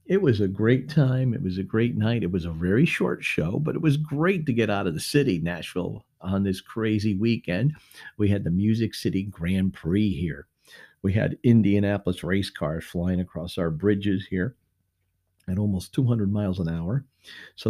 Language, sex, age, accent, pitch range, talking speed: English, male, 50-69, American, 95-125 Hz, 190 wpm